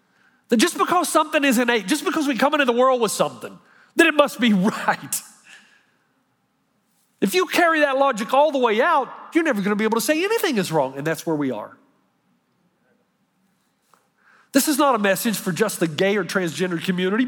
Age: 40-59